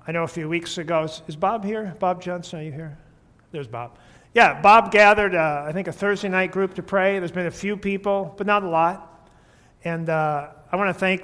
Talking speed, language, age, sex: 230 wpm, English, 50-69, male